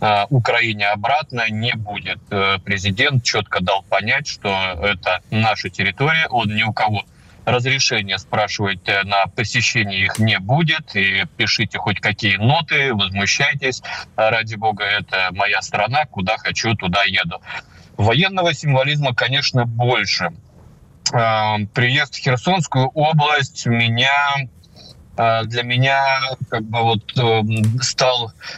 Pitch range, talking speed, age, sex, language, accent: 105-125 Hz, 110 wpm, 20-39, male, Russian, native